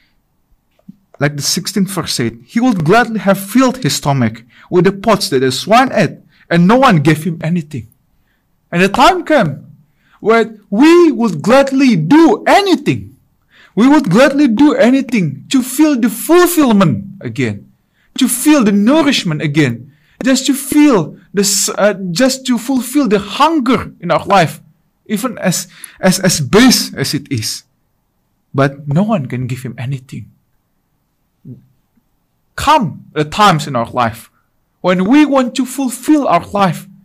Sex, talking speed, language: male, 145 wpm, English